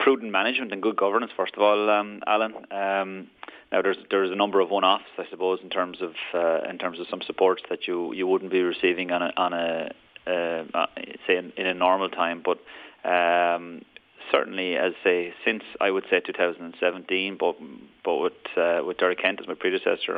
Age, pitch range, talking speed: 30-49, 90-100 Hz, 200 wpm